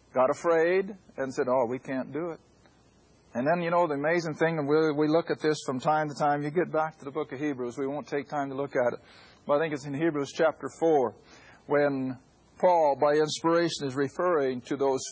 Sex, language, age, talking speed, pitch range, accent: male, English, 50-69, 225 wpm, 155-245 Hz, American